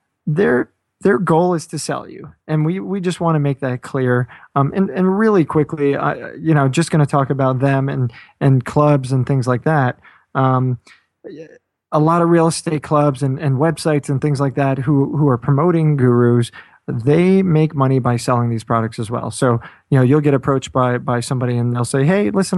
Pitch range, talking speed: 130-160 Hz, 210 wpm